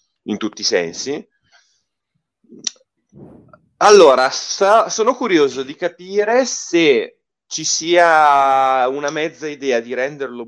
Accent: native